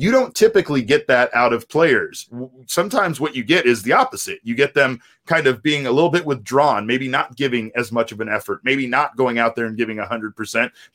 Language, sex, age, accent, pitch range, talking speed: English, male, 30-49, American, 115-160 Hz, 225 wpm